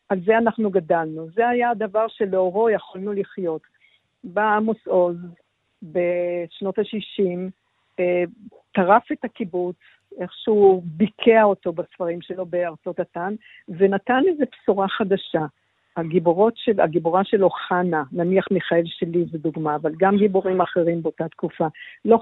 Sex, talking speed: female, 120 wpm